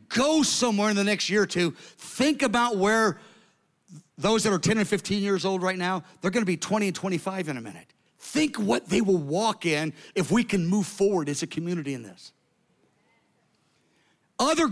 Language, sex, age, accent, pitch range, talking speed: English, male, 50-69, American, 175-220 Hz, 195 wpm